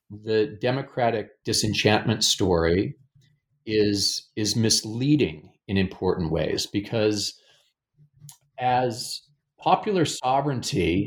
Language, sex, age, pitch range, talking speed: English, male, 40-59, 100-145 Hz, 75 wpm